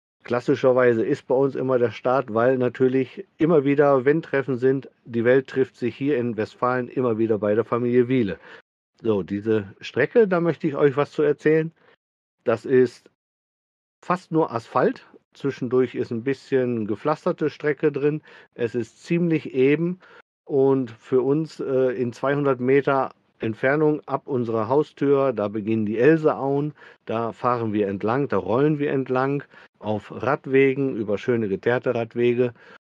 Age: 50-69